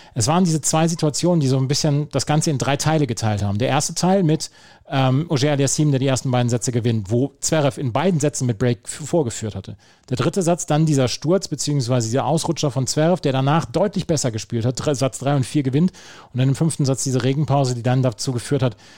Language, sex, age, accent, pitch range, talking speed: German, male, 30-49, German, 120-150 Hz, 230 wpm